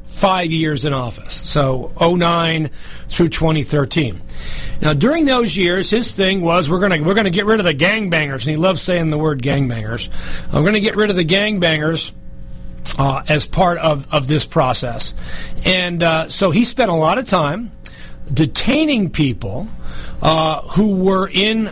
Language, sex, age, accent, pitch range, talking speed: English, male, 40-59, American, 150-190 Hz, 170 wpm